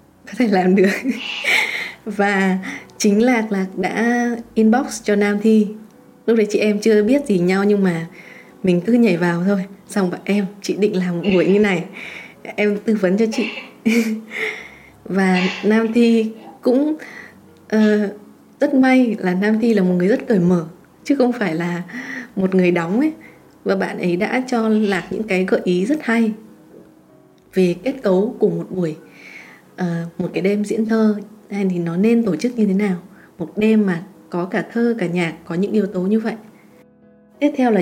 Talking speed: 185 wpm